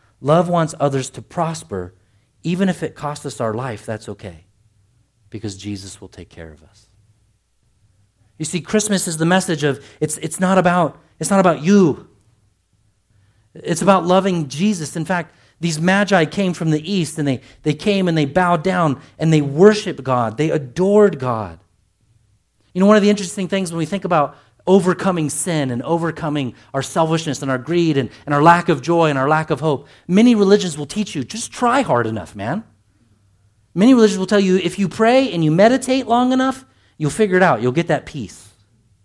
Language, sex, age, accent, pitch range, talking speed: English, male, 40-59, American, 105-180 Hz, 190 wpm